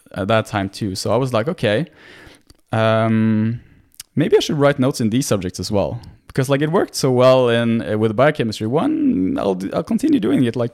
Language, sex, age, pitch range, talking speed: English, male, 20-39, 105-135 Hz, 205 wpm